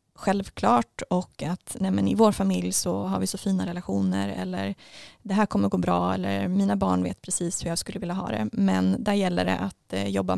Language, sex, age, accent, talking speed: Swedish, female, 20-39, native, 215 wpm